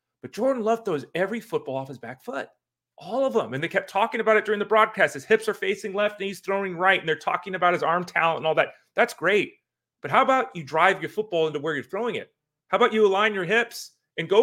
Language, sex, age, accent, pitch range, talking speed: English, male, 30-49, American, 145-200 Hz, 260 wpm